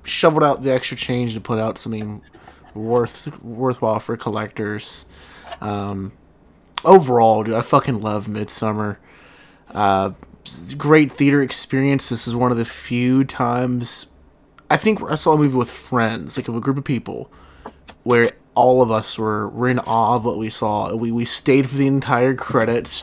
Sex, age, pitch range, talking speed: male, 20-39, 110-135 Hz, 165 wpm